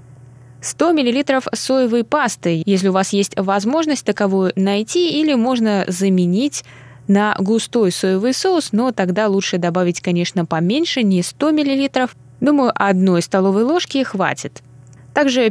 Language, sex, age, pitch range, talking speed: Russian, female, 20-39, 130-220 Hz, 130 wpm